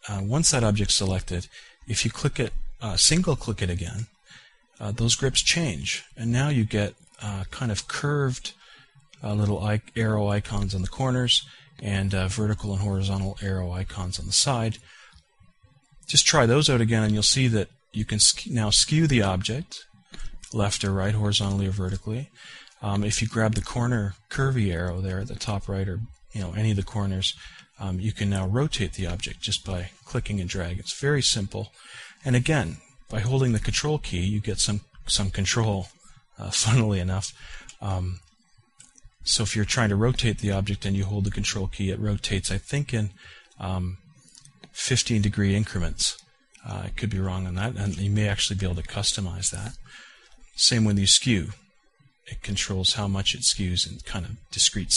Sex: male